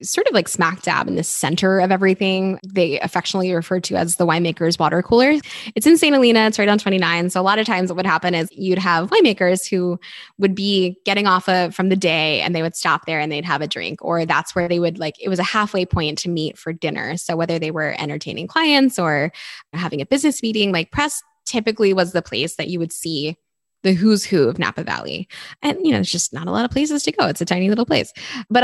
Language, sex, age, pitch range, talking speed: English, female, 10-29, 165-200 Hz, 245 wpm